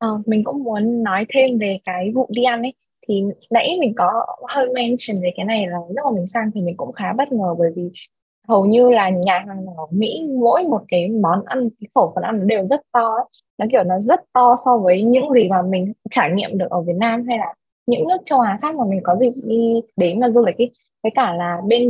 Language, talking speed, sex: Vietnamese, 250 wpm, female